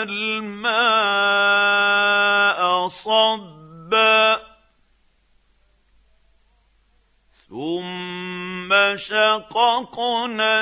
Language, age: English, 50-69